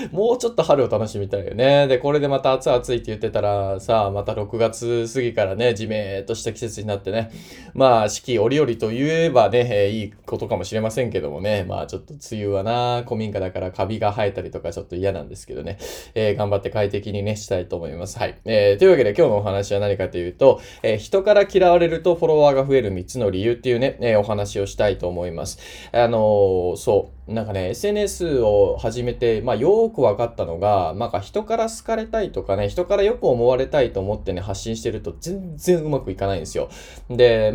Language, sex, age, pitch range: Japanese, male, 20-39, 100-155 Hz